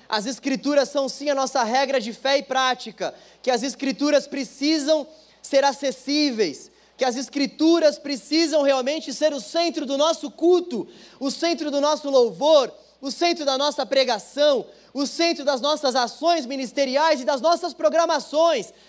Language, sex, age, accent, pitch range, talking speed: Portuguese, male, 20-39, Brazilian, 230-285 Hz, 155 wpm